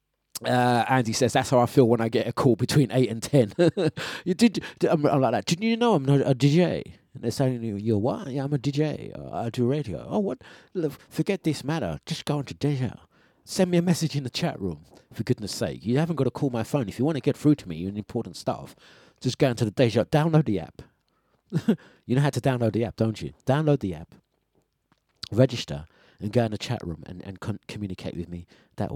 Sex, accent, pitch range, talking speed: male, British, 105-140 Hz, 240 wpm